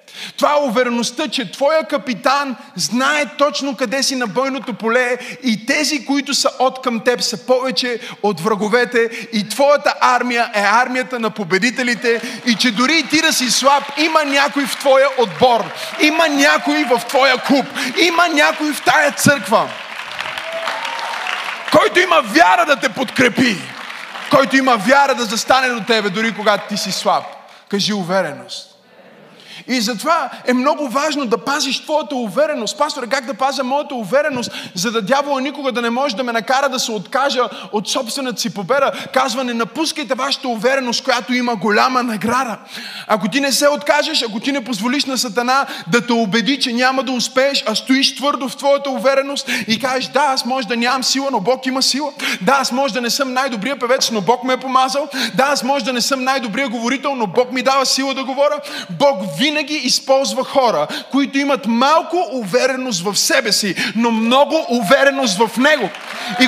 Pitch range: 240-280 Hz